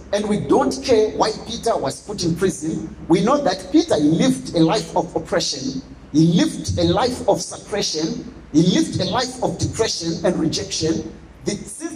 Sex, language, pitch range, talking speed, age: male, English, 160-230 Hz, 175 wpm, 50-69